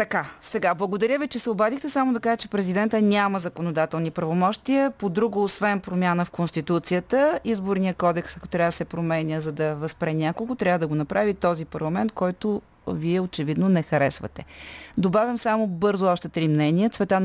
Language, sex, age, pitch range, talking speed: Bulgarian, female, 30-49, 160-200 Hz, 170 wpm